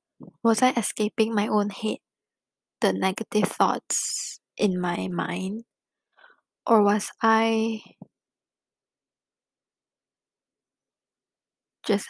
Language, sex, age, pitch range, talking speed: English, female, 20-39, 205-240 Hz, 80 wpm